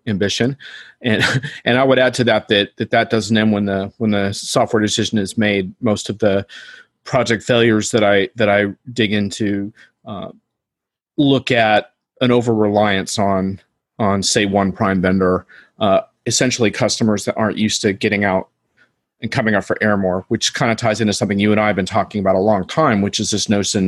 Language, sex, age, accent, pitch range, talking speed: English, male, 40-59, American, 100-115 Hz, 200 wpm